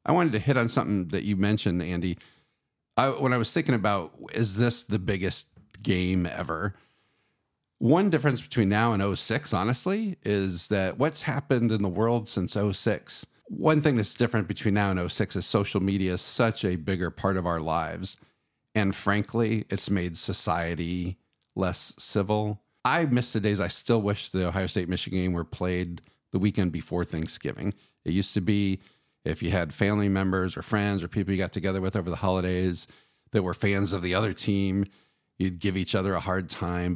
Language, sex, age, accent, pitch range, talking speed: English, male, 50-69, American, 90-115 Hz, 185 wpm